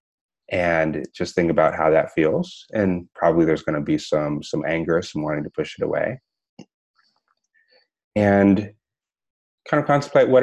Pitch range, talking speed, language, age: 85-120 Hz, 150 wpm, English, 30-49